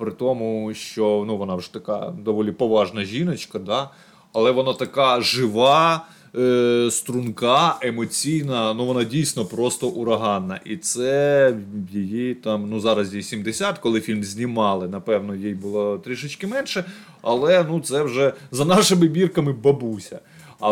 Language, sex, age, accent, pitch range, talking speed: Ukrainian, male, 20-39, native, 110-150 Hz, 140 wpm